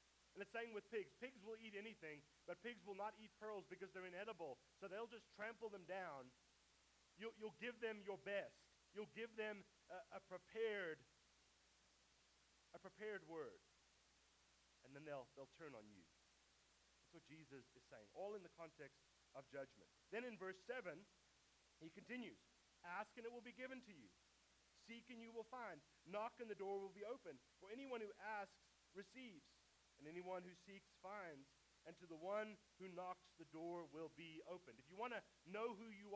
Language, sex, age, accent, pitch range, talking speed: English, male, 30-49, American, 155-220 Hz, 185 wpm